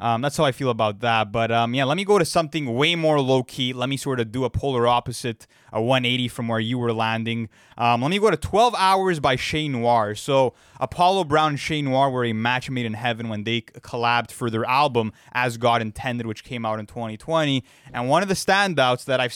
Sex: male